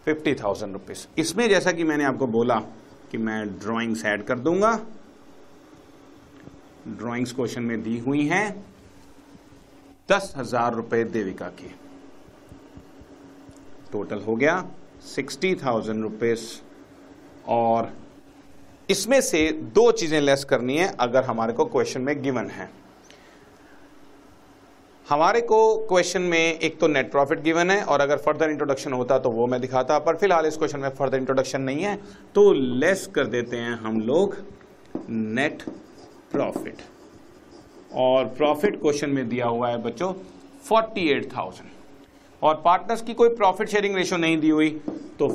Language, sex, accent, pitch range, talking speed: Hindi, male, native, 120-180 Hz, 135 wpm